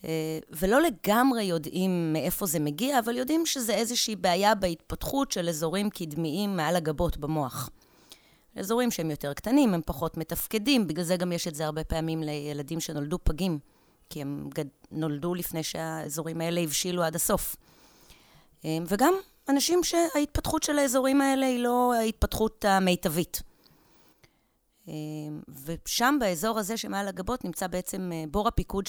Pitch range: 160-220 Hz